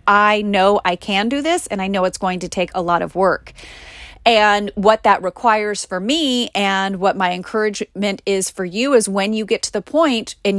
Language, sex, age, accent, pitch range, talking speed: English, female, 30-49, American, 190-230 Hz, 215 wpm